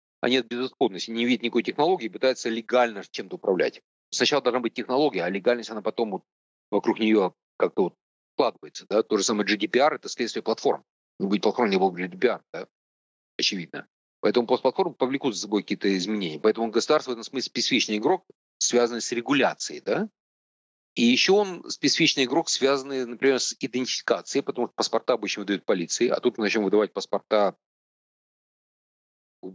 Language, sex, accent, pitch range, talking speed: Russian, male, native, 105-135 Hz, 165 wpm